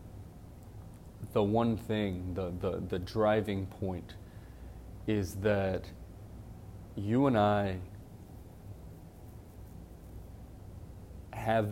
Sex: male